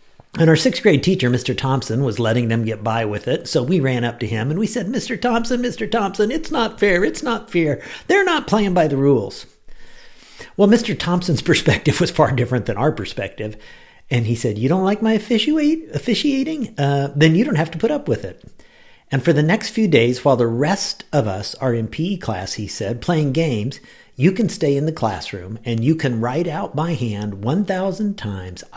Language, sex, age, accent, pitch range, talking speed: English, male, 50-69, American, 115-180 Hz, 215 wpm